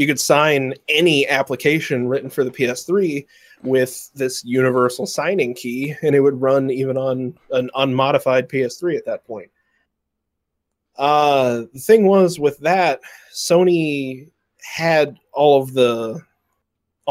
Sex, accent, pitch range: male, American, 125-145 Hz